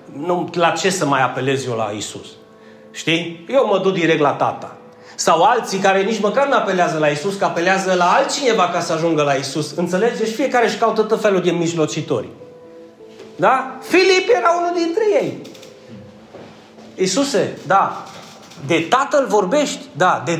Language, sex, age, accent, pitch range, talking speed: Romanian, male, 30-49, native, 165-230 Hz, 165 wpm